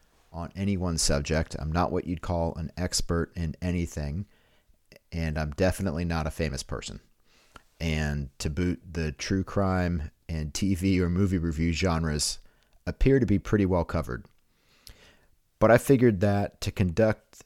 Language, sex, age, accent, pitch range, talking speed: English, male, 40-59, American, 80-100 Hz, 150 wpm